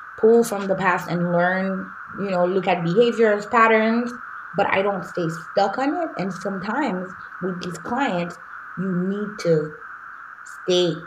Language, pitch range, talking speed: English, 165-195 Hz, 150 wpm